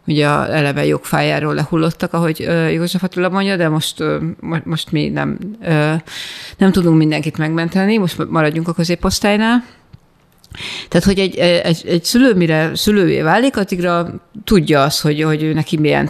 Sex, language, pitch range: female, Hungarian, 155-195 Hz